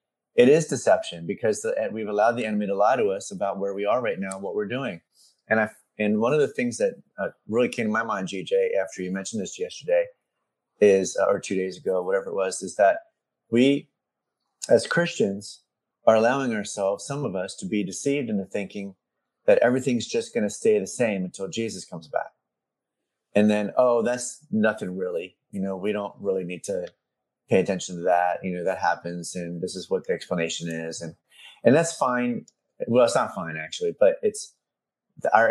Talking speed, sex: 200 wpm, male